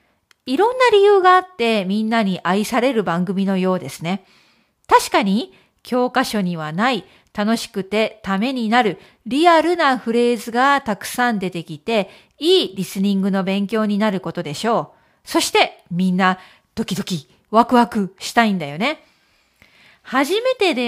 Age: 40-59